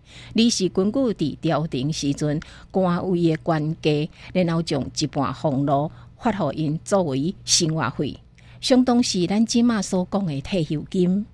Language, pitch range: Chinese, 150-200 Hz